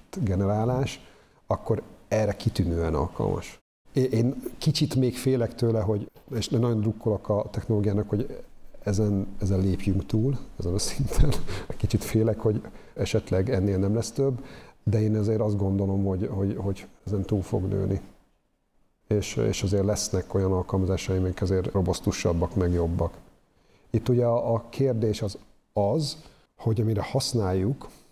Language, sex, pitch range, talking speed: Hungarian, male, 95-110 Hz, 140 wpm